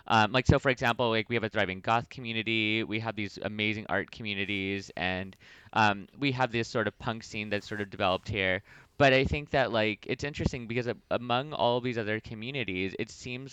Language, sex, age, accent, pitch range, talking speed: English, male, 20-39, American, 100-120 Hz, 215 wpm